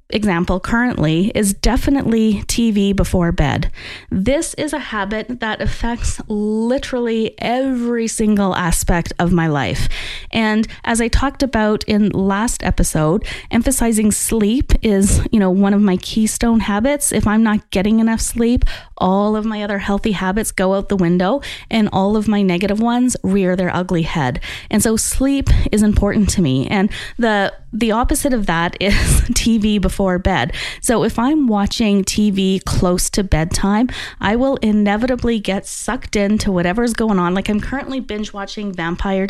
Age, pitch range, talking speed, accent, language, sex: 20-39, 195-240 Hz, 160 wpm, American, English, female